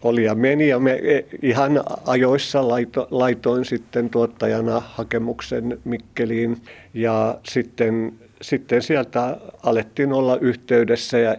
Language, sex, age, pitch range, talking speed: Finnish, male, 50-69, 110-120 Hz, 110 wpm